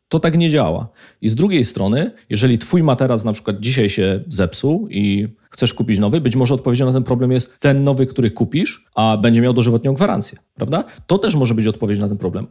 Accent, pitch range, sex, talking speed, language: native, 105-135 Hz, male, 215 wpm, Polish